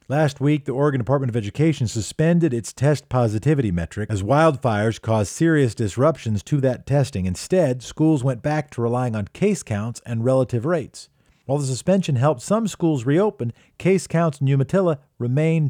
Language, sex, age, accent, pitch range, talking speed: English, male, 50-69, American, 110-150 Hz, 170 wpm